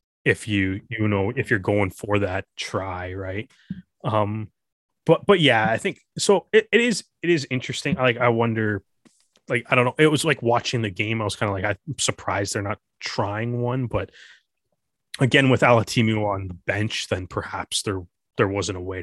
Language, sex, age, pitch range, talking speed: English, male, 20-39, 100-130 Hz, 195 wpm